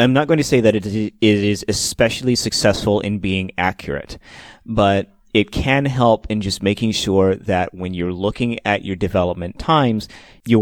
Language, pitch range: English, 95-120 Hz